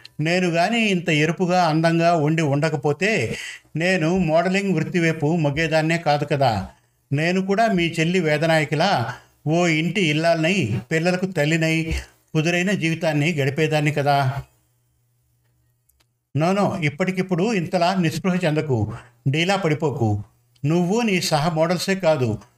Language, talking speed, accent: Telugu, 100 wpm, native